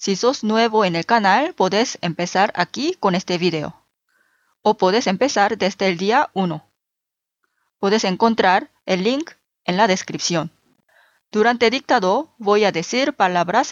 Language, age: Korean, 20-39